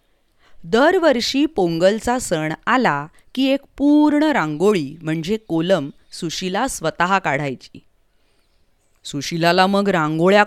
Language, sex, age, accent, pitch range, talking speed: English, female, 20-39, Indian, 165-245 Hz, 105 wpm